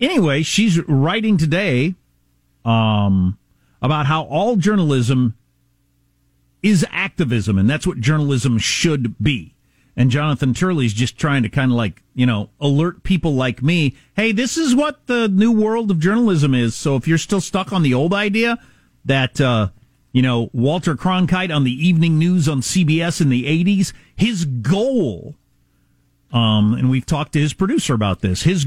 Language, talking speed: English, 165 wpm